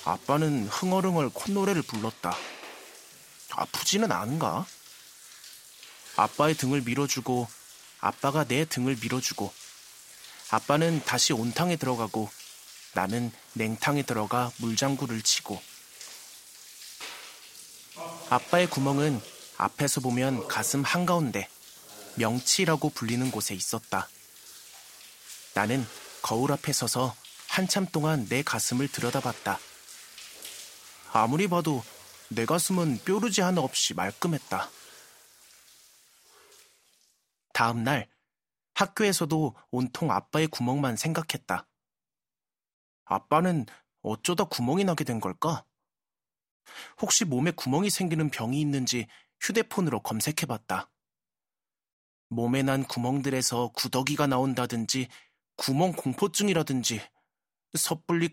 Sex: male